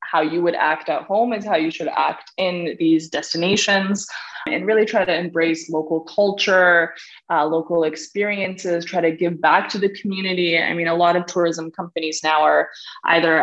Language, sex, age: English, female, 20-39